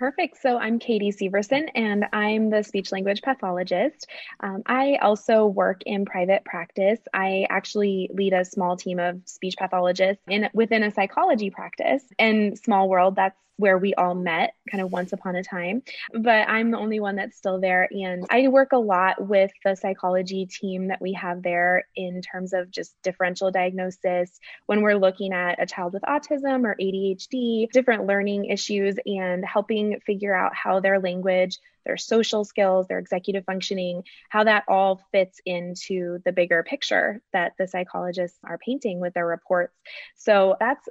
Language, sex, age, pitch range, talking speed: English, female, 20-39, 185-210 Hz, 170 wpm